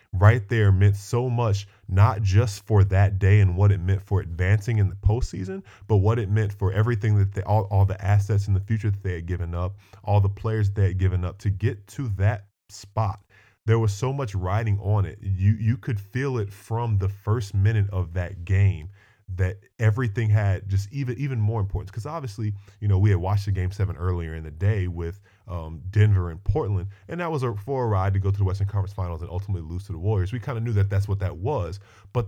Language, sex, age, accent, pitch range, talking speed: English, male, 10-29, American, 95-110 Hz, 235 wpm